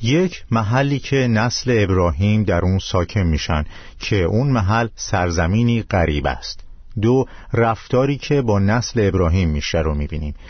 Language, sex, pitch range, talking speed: Persian, male, 90-125 Hz, 150 wpm